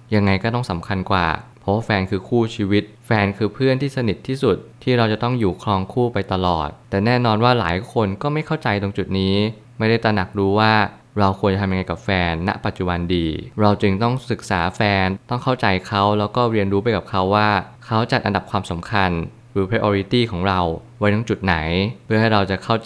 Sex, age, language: male, 20-39, Thai